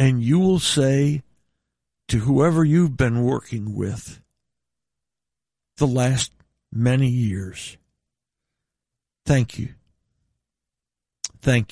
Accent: American